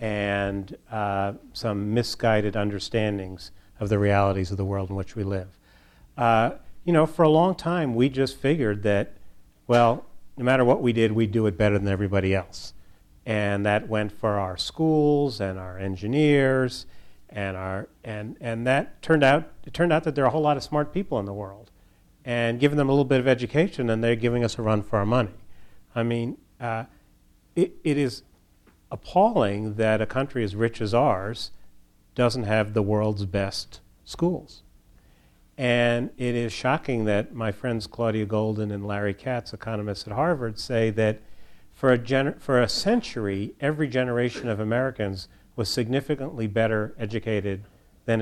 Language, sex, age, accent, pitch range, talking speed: English, male, 40-59, American, 100-130 Hz, 175 wpm